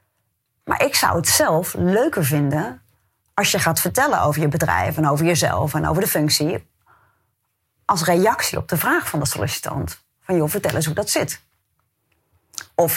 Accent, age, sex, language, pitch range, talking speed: Dutch, 30-49, female, Dutch, 150-215 Hz, 170 wpm